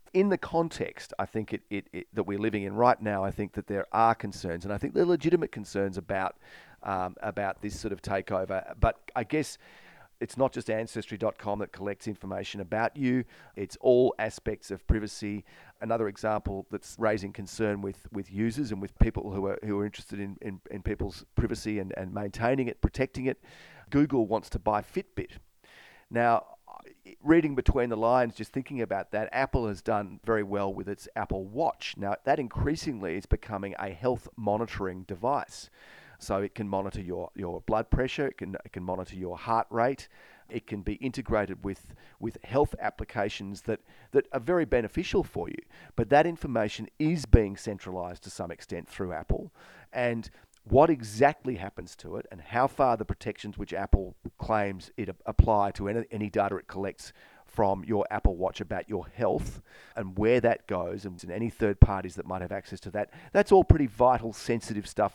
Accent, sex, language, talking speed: Australian, male, English, 185 wpm